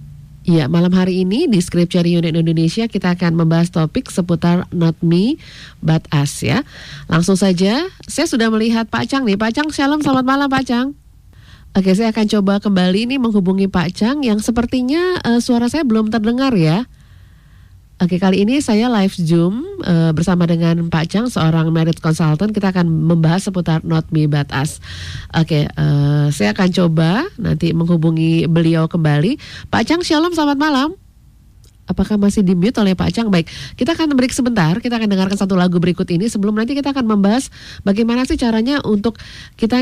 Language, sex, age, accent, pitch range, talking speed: English, female, 30-49, Indonesian, 170-225 Hz, 175 wpm